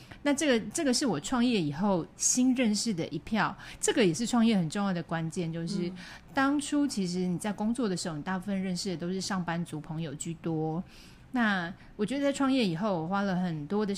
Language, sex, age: Chinese, female, 30-49